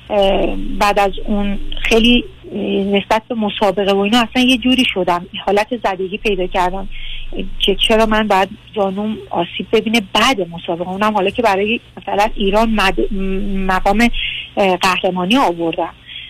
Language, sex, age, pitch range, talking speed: Persian, female, 40-59, 195-245 Hz, 130 wpm